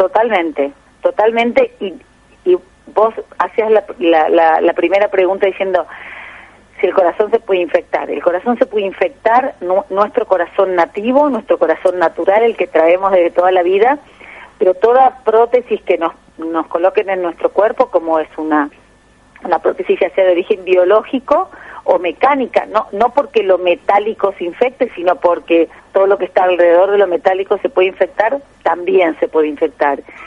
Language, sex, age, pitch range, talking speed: Spanish, female, 40-59, 180-235 Hz, 165 wpm